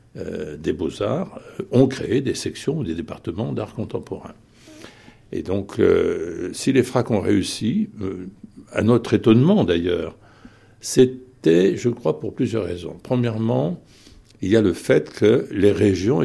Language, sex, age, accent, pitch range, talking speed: French, male, 60-79, French, 100-130 Hz, 150 wpm